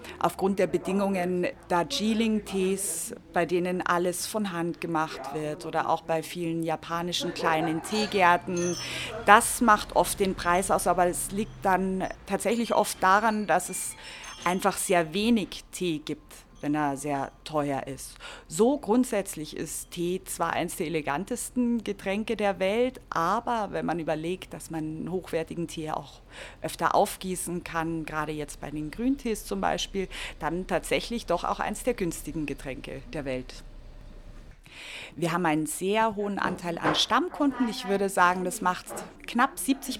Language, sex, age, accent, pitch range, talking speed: German, female, 30-49, German, 170-215 Hz, 150 wpm